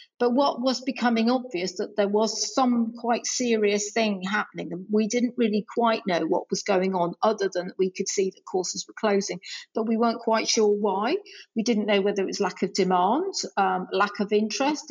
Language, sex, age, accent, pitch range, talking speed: English, female, 50-69, British, 195-240 Hz, 205 wpm